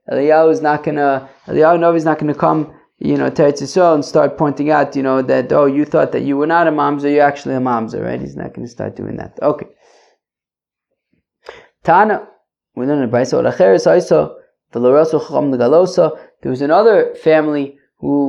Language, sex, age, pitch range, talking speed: English, male, 20-39, 140-165 Hz, 175 wpm